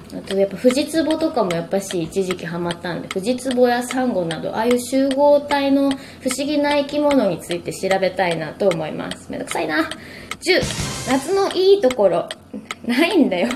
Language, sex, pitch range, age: Japanese, female, 200-290 Hz, 20-39